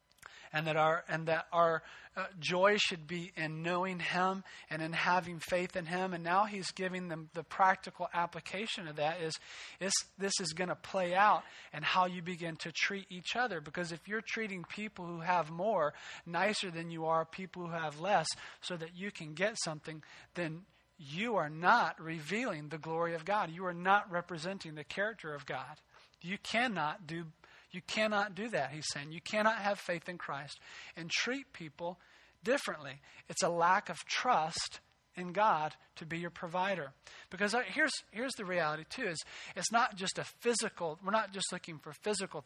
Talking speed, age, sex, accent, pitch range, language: 185 wpm, 40-59, male, American, 160-195 Hz, English